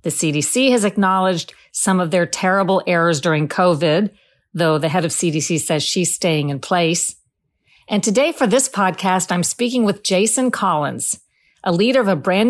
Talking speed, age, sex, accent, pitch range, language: 175 wpm, 50-69, female, American, 170-210 Hz, English